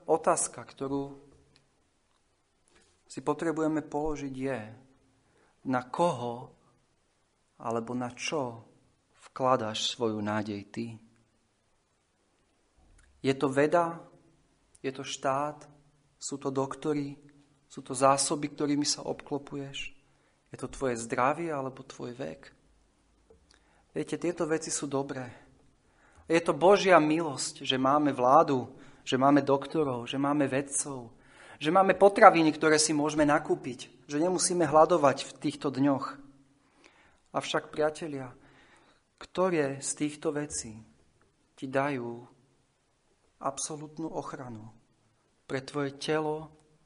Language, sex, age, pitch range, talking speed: Slovak, male, 40-59, 125-150 Hz, 105 wpm